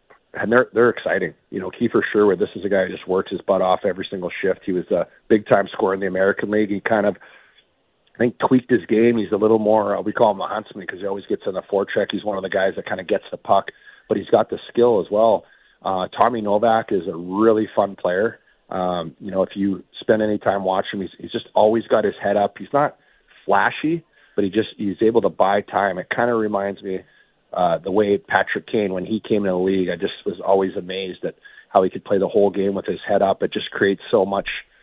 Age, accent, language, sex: 40-59, American, English, male